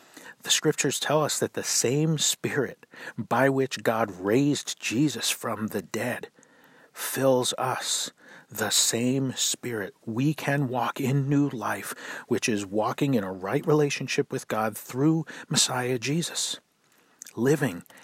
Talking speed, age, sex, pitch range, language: 135 wpm, 40-59, male, 110-145 Hz, English